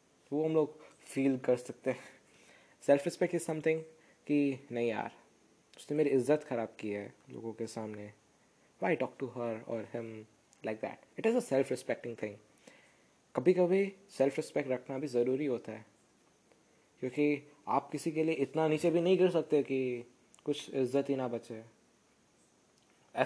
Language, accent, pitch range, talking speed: Hindi, native, 125-160 Hz, 165 wpm